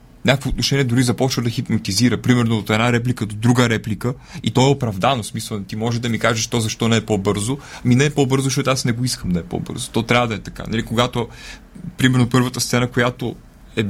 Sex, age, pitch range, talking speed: male, 30-49, 110-130 Hz, 225 wpm